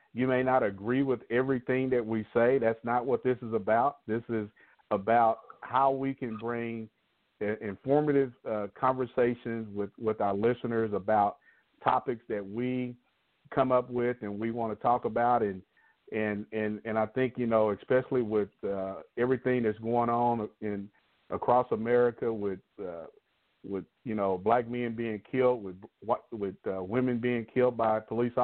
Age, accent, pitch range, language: 50-69, American, 110-125 Hz, English